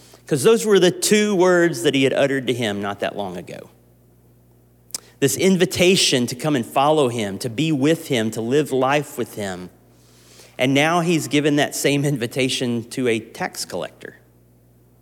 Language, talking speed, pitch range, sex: English, 170 wpm, 90-145 Hz, male